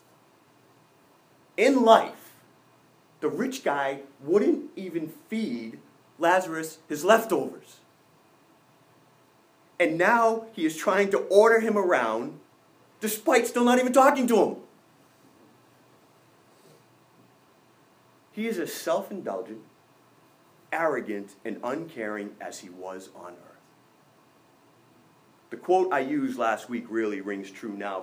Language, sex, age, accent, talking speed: English, male, 30-49, American, 105 wpm